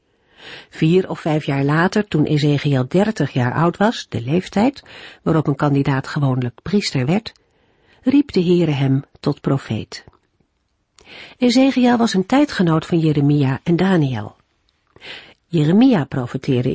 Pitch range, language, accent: 145-200 Hz, Dutch, Dutch